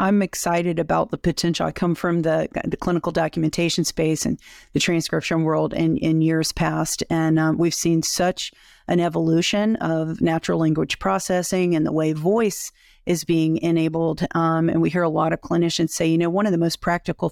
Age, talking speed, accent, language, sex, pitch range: 40-59, 190 wpm, American, English, female, 160-180 Hz